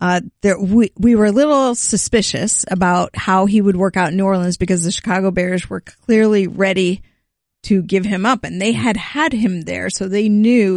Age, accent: 50-69, American